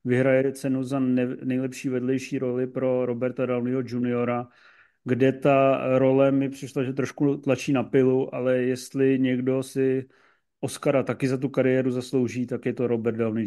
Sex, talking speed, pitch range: male, 155 wpm, 125-145 Hz